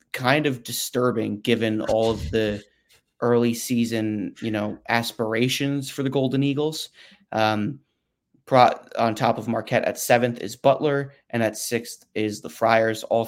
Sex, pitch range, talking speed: male, 110-130 Hz, 150 wpm